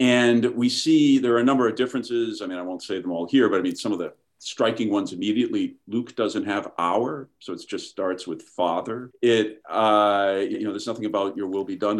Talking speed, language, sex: 235 wpm, English, male